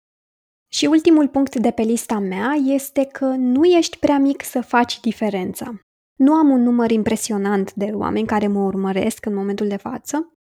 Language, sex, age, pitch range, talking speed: Romanian, female, 20-39, 210-275 Hz, 175 wpm